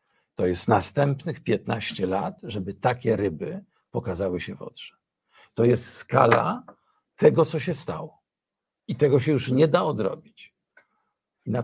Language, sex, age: Polish, male, 50-69